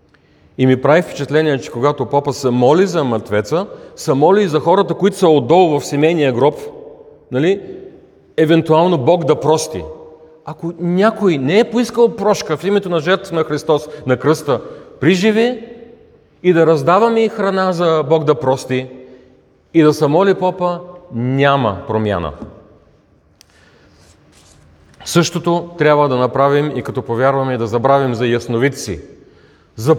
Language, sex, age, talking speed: Bulgarian, male, 40-59, 140 wpm